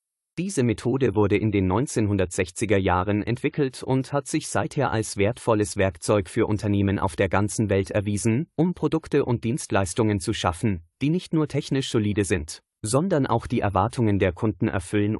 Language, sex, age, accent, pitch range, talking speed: German, male, 30-49, German, 100-130 Hz, 160 wpm